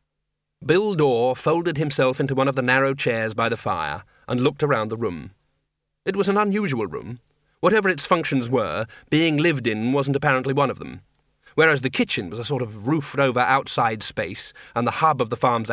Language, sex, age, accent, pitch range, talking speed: English, male, 40-59, British, 125-155 Hz, 195 wpm